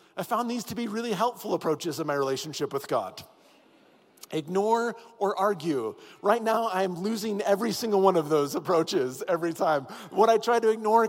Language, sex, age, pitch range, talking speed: English, male, 40-59, 145-205 Hz, 180 wpm